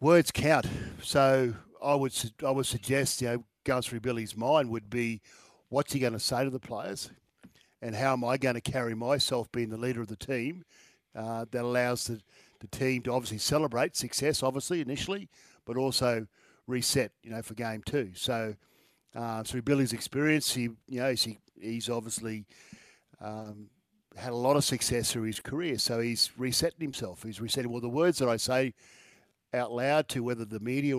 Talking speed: 185 wpm